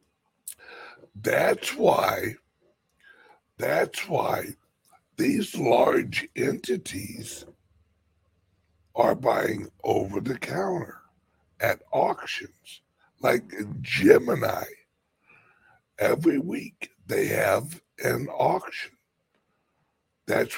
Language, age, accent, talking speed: English, 60-79, American, 65 wpm